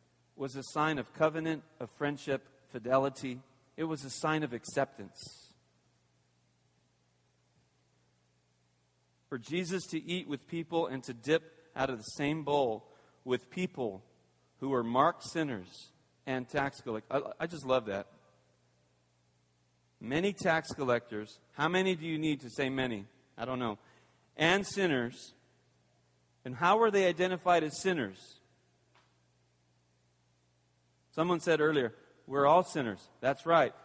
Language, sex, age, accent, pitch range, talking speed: English, male, 40-59, American, 100-160 Hz, 130 wpm